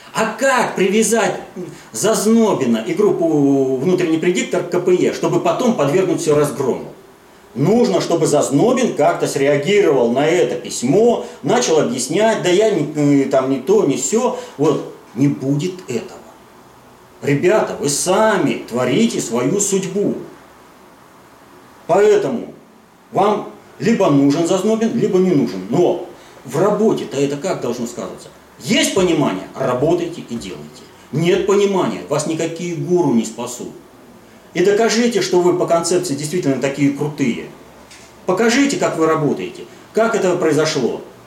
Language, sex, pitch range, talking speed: Russian, male, 140-200 Hz, 125 wpm